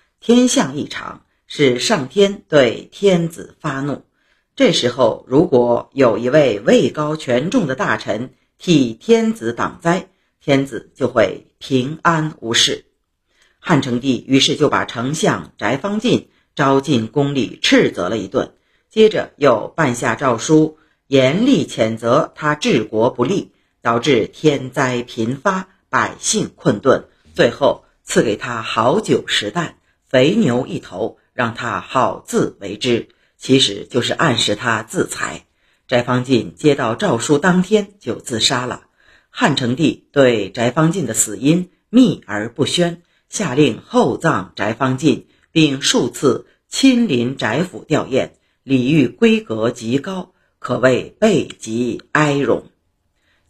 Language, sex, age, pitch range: Chinese, female, 50-69, 120-175 Hz